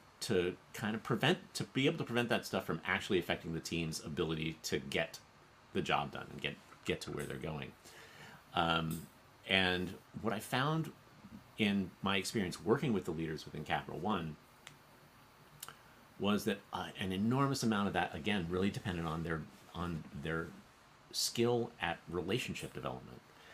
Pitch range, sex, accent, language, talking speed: 80-110 Hz, male, American, English, 160 wpm